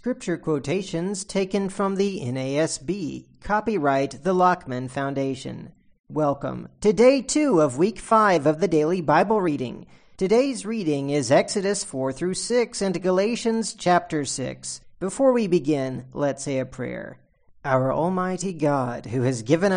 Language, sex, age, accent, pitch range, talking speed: English, male, 40-59, American, 135-175 Hz, 140 wpm